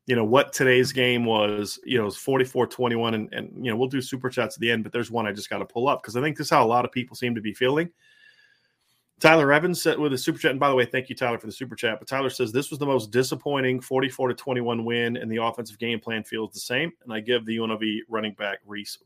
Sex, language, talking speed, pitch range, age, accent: male, English, 285 wpm, 115-140 Hz, 30-49, American